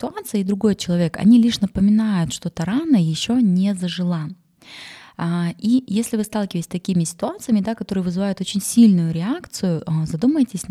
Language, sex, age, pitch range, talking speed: Russian, female, 20-39, 175-215 Hz, 145 wpm